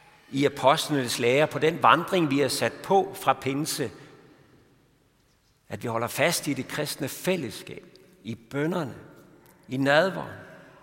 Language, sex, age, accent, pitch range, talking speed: Danish, male, 60-79, native, 115-170 Hz, 135 wpm